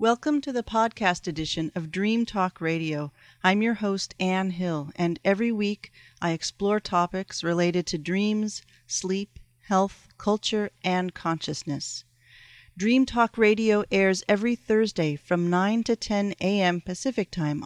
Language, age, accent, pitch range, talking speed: English, 40-59, American, 165-210 Hz, 140 wpm